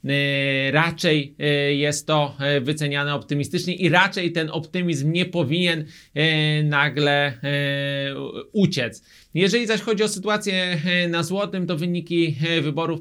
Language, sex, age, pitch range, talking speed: Polish, male, 30-49, 145-160 Hz, 105 wpm